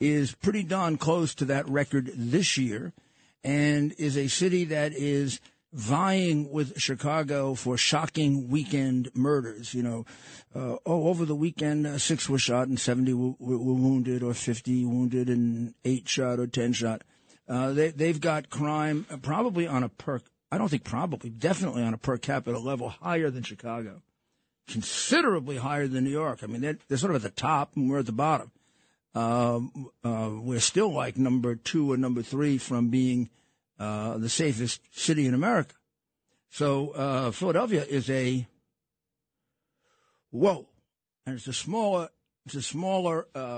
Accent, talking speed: American, 160 wpm